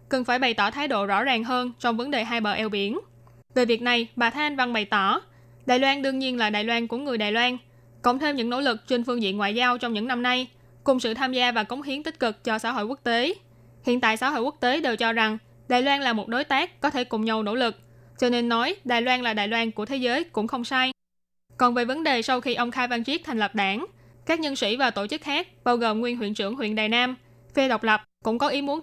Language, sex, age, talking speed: Vietnamese, female, 10-29, 275 wpm